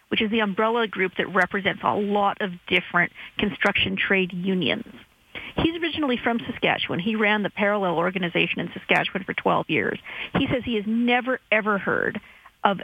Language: English